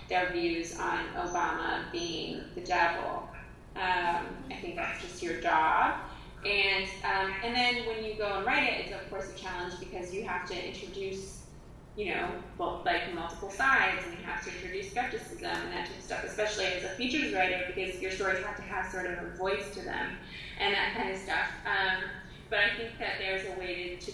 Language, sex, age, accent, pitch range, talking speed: English, female, 20-39, American, 180-215 Hz, 205 wpm